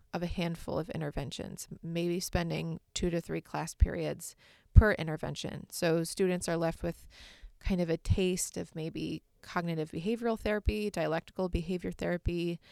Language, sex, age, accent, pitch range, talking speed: English, female, 20-39, American, 170-195 Hz, 145 wpm